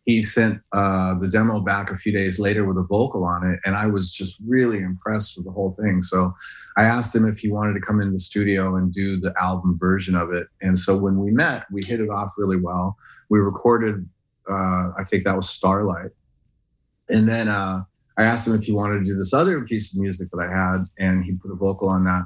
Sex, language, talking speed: male, Finnish, 240 wpm